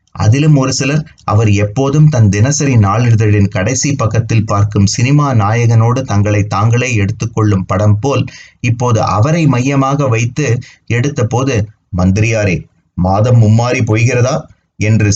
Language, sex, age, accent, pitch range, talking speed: Tamil, male, 30-49, native, 105-130 Hz, 110 wpm